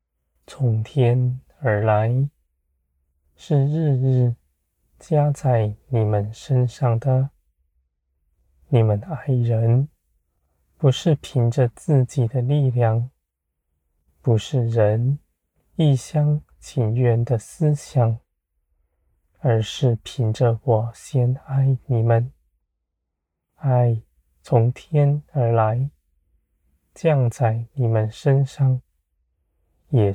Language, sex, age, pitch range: Chinese, male, 20-39, 80-130 Hz